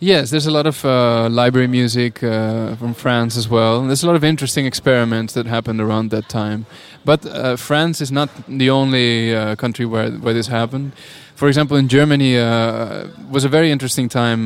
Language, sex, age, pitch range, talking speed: French, male, 20-39, 115-140 Hz, 205 wpm